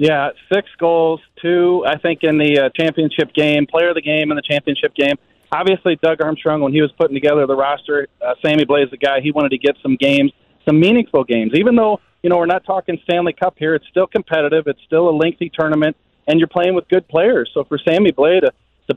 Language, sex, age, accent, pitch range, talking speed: English, male, 40-59, American, 140-175 Hz, 235 wpm